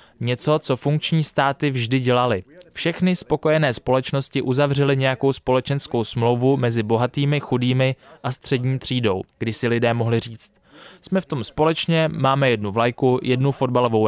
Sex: male